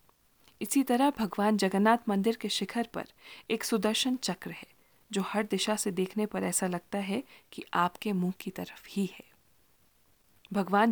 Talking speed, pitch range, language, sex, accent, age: 160 wpm, 185-230 Hz, Hindi, female, native, 40-59